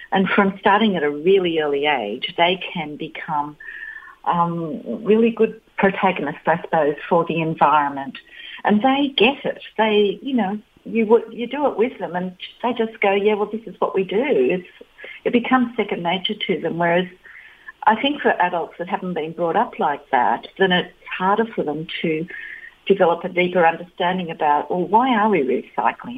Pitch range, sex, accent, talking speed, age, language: 170-225 Hz, female, Australian, 180 wpm, 50-69, English